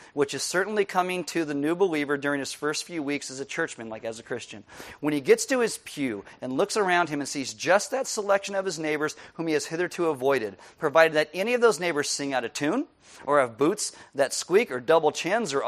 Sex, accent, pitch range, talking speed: male, American, 135-180 Hz, 235 wpm